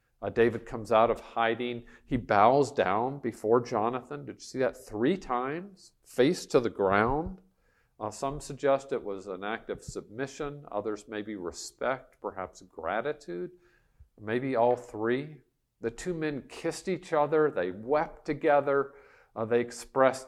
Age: 50-69